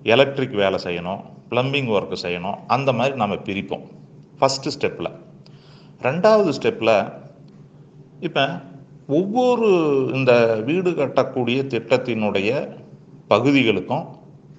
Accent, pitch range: native, 120-155 Hz